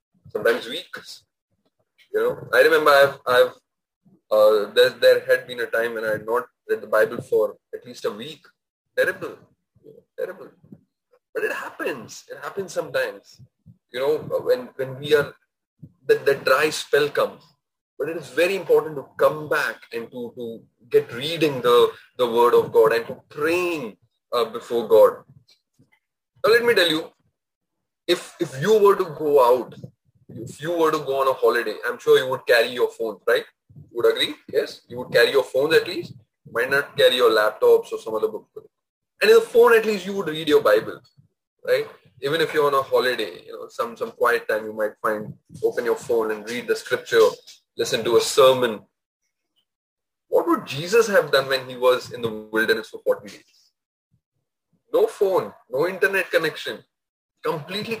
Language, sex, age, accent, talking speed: English, male, 20-39, Indian, 180 wpm